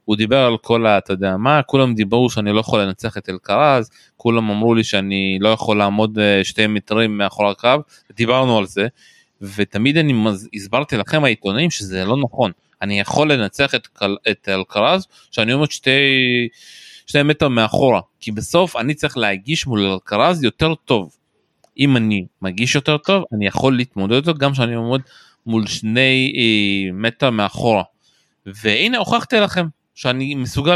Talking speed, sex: 155 wpm, male